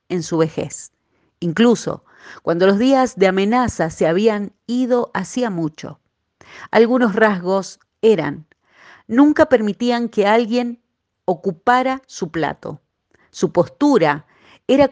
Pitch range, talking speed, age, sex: 175-220 Hz, 110 wpm, 40-59, female